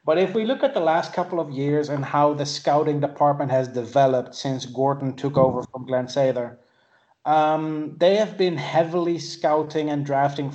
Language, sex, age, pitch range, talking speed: English, male, 30-49, 135-155 Hz, 180 wpm